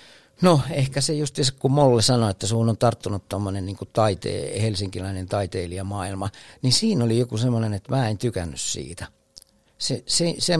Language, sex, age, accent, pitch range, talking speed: Finnish, male, 60-79, native, 100-125 Hz, 165 wpm